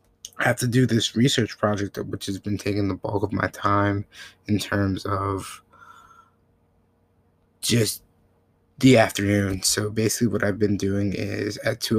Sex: male